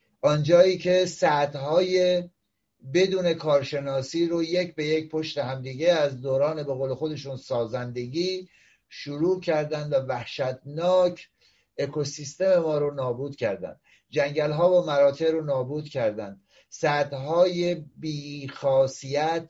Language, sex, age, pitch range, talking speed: Persian, male, 60-79, 140-170 Hz, 110 wpm